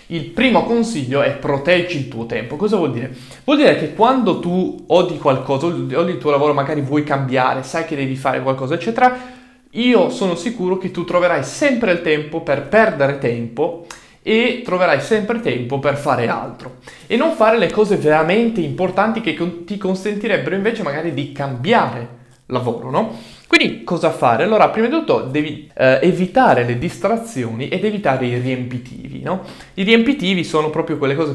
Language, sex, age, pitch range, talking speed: Italian, male, 20-39, 140-205 Hz, 170 wpm